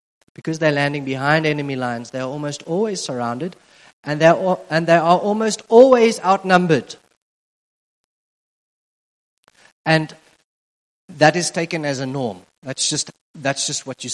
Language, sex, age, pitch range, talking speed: English, male, 30-49, 140-175 Hz, 135 wpm